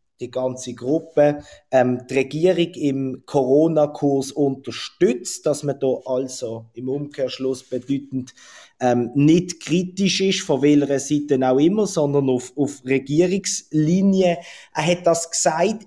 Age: 20-39